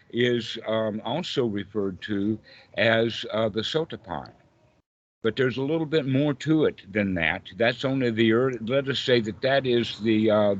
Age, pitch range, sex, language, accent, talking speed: 60-79, 95-120 Hz, male, English, American, 175 wpm